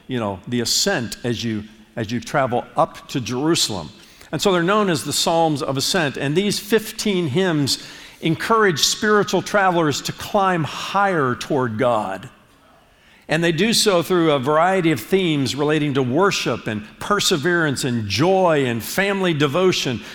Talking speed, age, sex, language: 155 wpm, 50-69, male, English